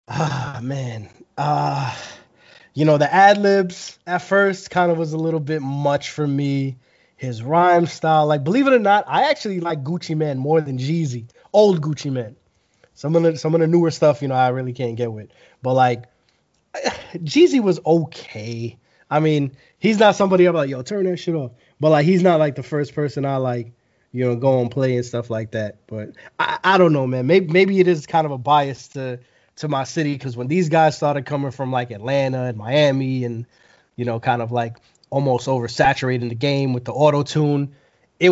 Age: 20-39